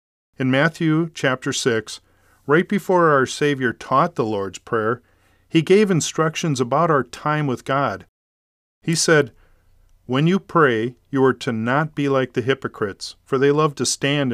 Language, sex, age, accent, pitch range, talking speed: English, male, 40-59, American, 105-150 Hz, 160 wpm